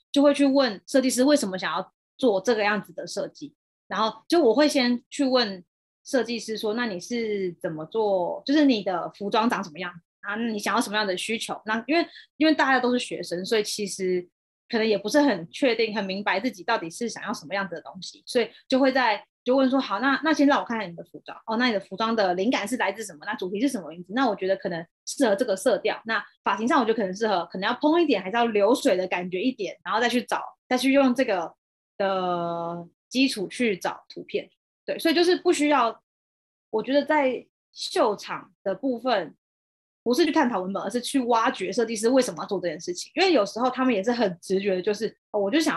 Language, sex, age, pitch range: Chinese, female, 20-39, 195-265 Hz